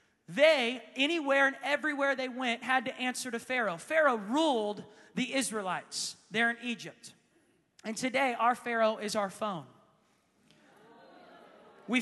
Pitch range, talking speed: 215-270 Hz, 130 wpm